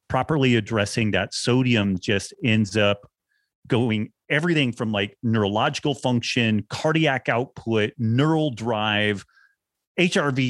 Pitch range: 105-125 Hz